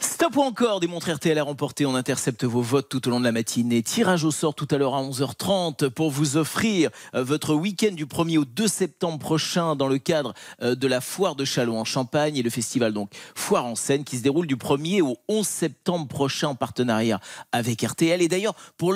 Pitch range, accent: 125-170 Hz, French